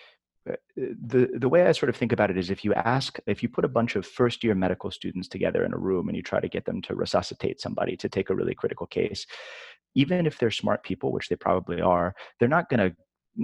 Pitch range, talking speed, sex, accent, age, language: 95-120 Hz, 245 wpm, male, American, 30-49, English